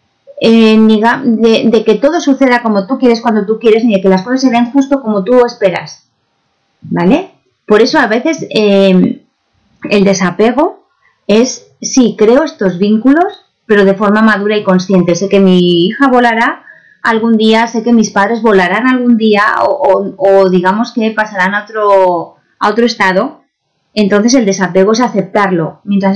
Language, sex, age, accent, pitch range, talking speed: Spanish, female, 30-49, Spanish, 195-235 Hz, 170 wpm